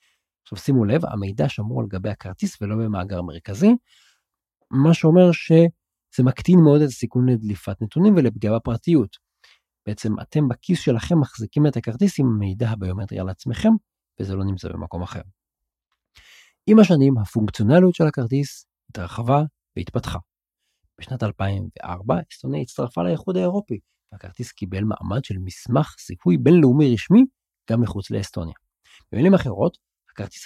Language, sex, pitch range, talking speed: Hebrew, male, 100-150 Hz, 125 wpm